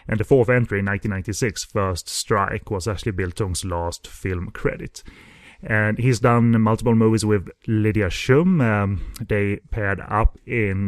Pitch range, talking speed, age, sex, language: 100-130 Hz, 150 wpm, 30-49, male, English